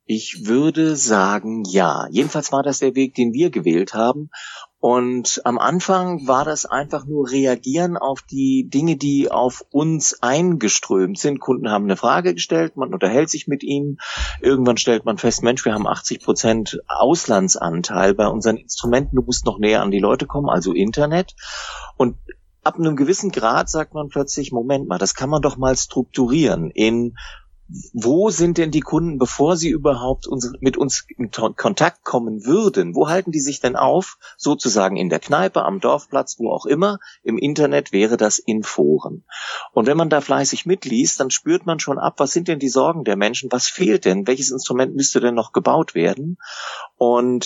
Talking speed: 180 wpm